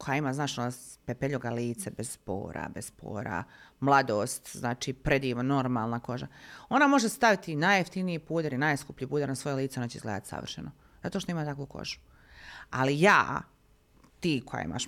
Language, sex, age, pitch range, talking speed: Croatian, female, 30-49, 135-185 Hz, 155 wpm